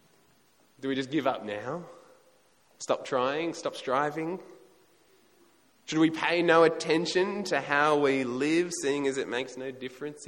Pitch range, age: 145-200 Hz, 20-39